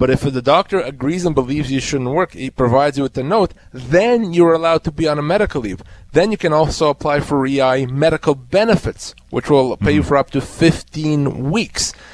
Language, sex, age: English, male, 30-49